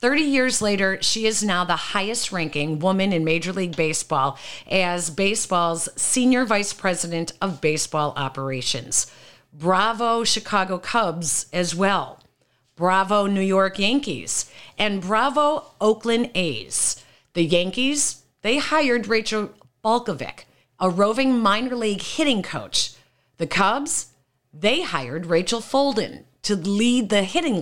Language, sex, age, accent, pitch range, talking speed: English, female, 50-69, American, 165-220 Hz, 120 wpm